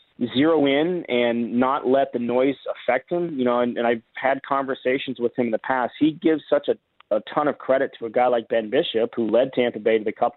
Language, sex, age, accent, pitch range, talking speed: English, male, 30-49, American, 115-135 Hz, 245 wpm